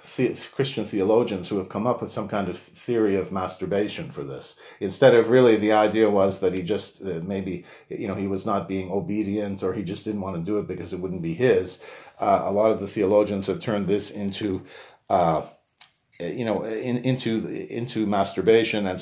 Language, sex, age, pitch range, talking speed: English, male, 50-69, 95-120 Hz, 190 wpm